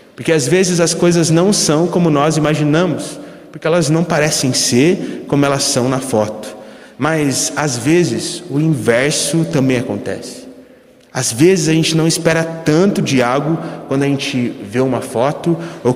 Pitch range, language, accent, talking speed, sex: 120-155 Hz, Portuguese, Brazilian, 160 wpm, male